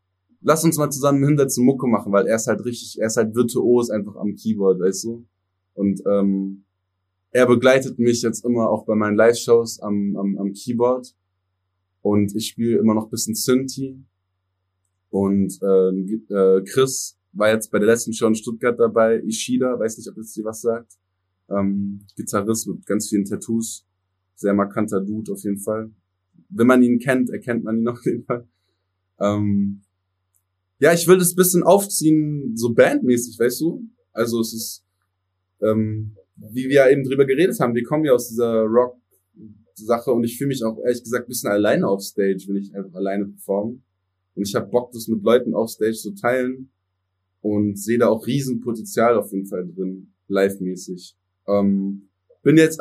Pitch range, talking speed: 95-125 Hz, 180 wpm